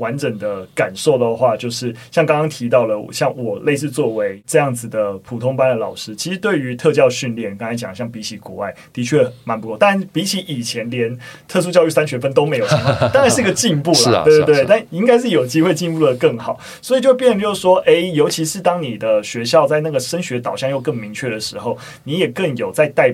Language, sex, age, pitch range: Chinese, male, 20-39, 120-170 Hz